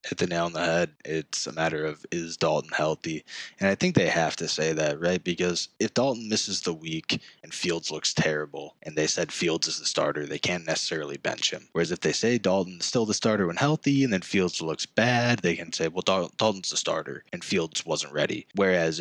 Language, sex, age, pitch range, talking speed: English, male, 20-39, 80-95 Hz, 225 wpm